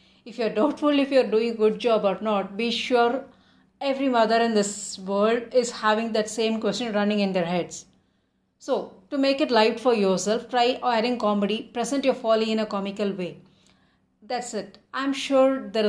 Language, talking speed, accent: English, 195 wpm, Indian